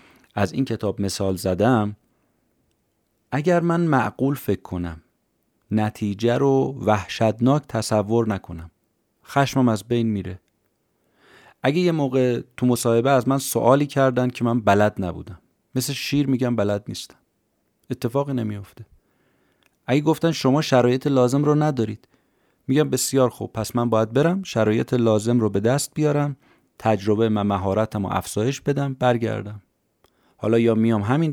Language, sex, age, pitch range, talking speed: Persian, male, 30-49, 100-130 Hz, 135 wpm